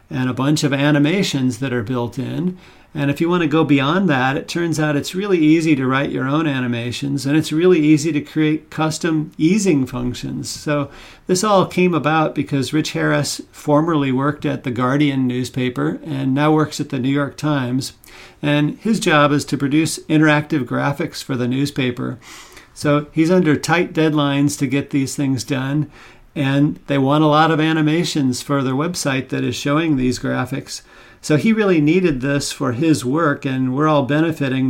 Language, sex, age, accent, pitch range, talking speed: English, male, 50-69, American, 135-155 Hz, 185 wpm